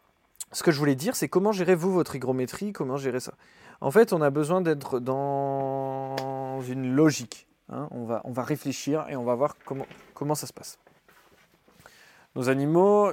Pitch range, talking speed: 120-150 Hz, 180 wpm